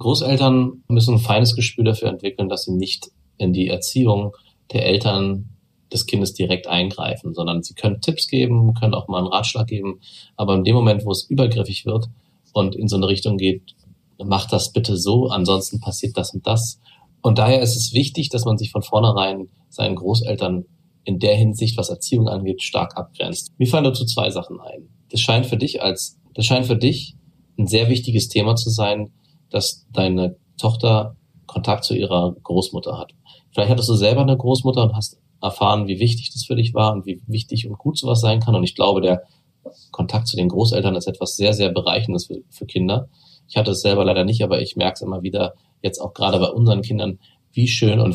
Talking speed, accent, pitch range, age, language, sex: 200 wpm, German, 95-125 Hz, 30-49, German, male